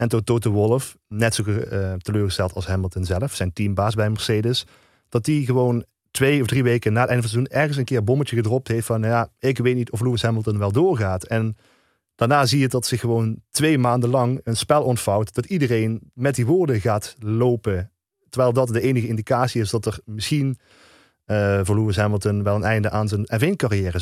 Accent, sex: Dutch, male